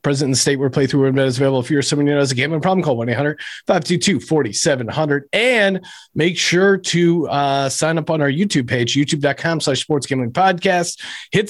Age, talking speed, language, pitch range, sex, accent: 40-59, 190 wpm, English, 140-195 Hz, male, American